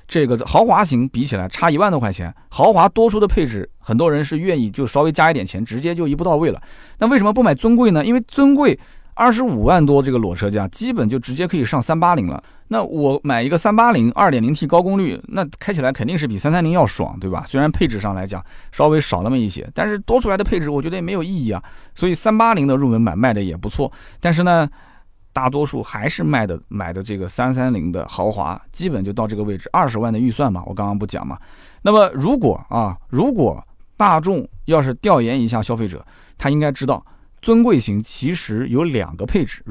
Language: Chinese